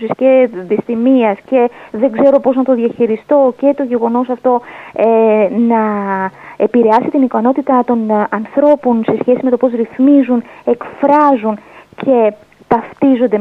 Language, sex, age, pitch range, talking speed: Greek, female, 20-39, 215-280 Hz, 135 wpm